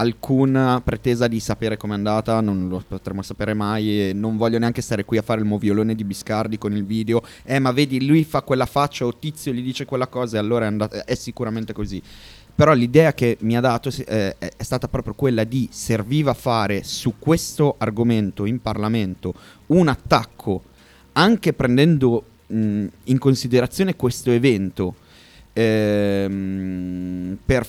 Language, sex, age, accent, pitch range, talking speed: Italian, male, 30-49, native, 105-130 Hz, 165 wpm